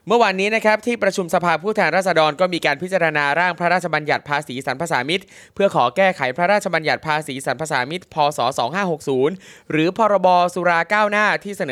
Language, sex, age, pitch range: Thai, male, 20-39, 160-200 Hz